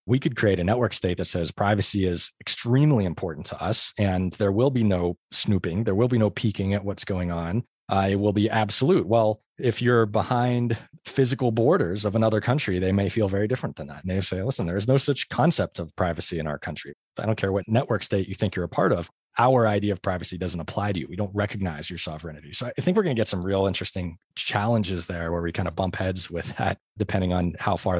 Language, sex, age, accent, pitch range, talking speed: English, male, 20-39, American, 90-110 Hz, 240 wpm